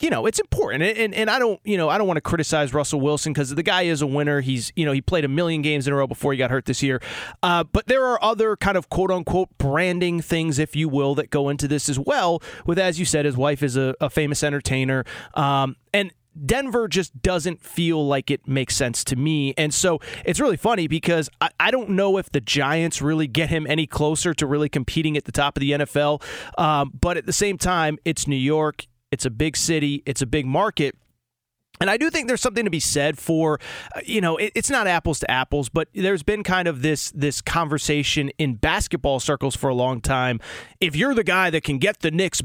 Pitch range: 145-185 Hz